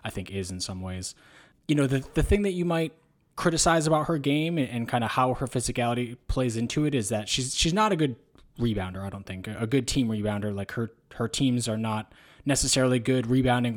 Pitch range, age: 105-130 Hz, 20-39